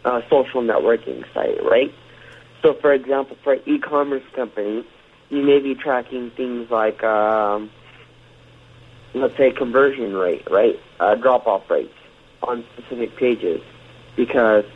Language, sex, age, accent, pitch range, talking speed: English, male, 40-59, American, 115-165 Hz, 130 wpm